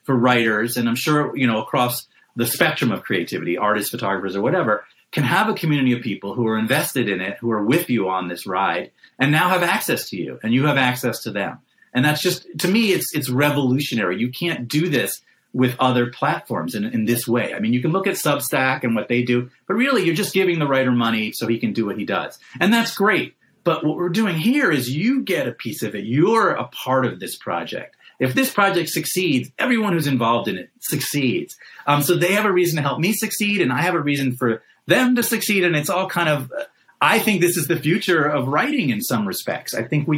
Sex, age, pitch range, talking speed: male, 40-59, 120-175 Hz, 240 wpm